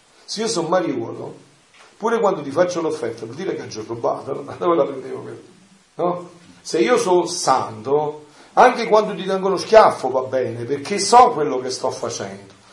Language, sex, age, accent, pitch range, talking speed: Italian, male, 50-69, native, 145-215 Hz, 180 wpm